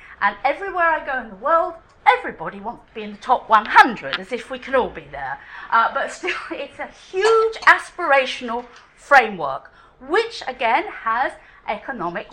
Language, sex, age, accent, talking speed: English, female, 40-59, British, 165 wpm